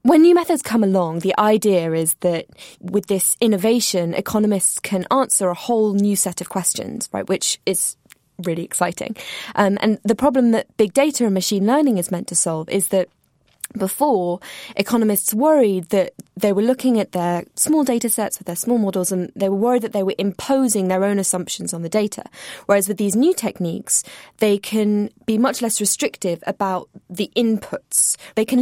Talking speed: 185 wpm